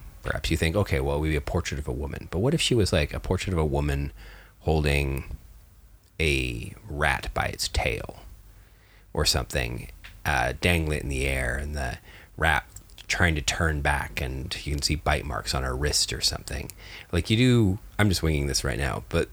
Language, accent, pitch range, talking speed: English, American, 75-100 Hz, 200 wpm